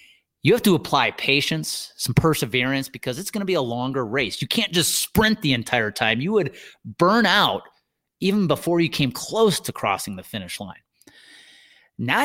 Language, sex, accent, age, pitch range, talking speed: English, male, American, 30-49, 125-200 Hz, 180 wpm